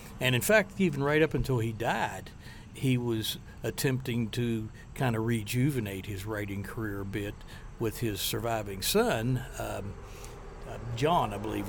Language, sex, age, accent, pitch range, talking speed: English, male, 60-79, American, 105-130 Hz, 155 wpm